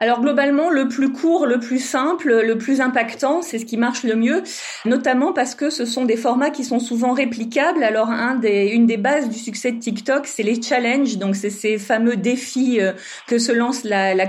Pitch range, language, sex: 205-250 Hz, French, female